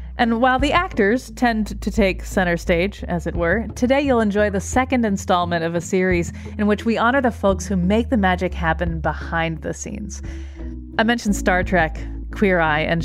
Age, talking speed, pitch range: 30-49, 195 wpm, 175-215 Hz